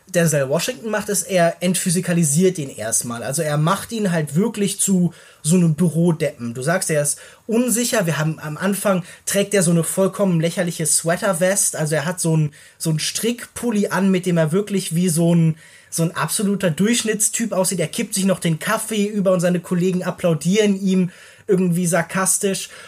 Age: 20-39